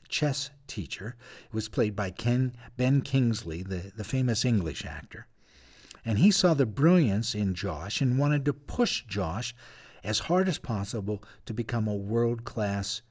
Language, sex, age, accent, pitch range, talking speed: English, male, 50-69, American, 105-135 Hz, 155 wpm